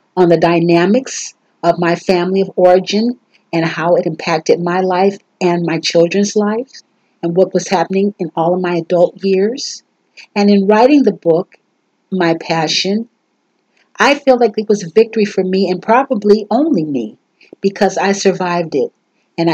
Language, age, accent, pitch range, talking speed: English, 50-69, American, 175-220 Hz, 165 wpm